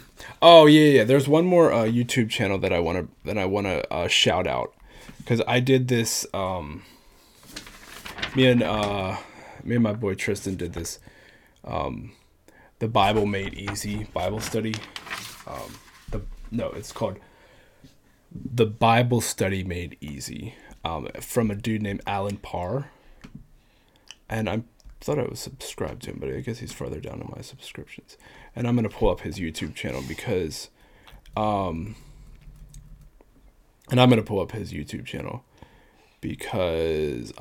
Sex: male